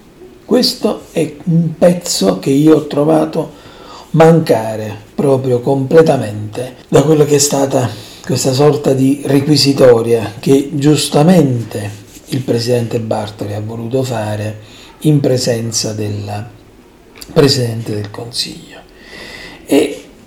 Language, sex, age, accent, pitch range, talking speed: Italian, male, 40-59, native, 120-155 Hz, 105 wpm